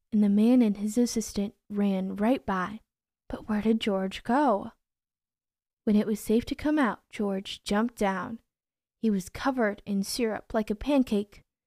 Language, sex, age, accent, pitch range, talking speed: English, female, 10-29, American, 200-250 Hz, 165 wpm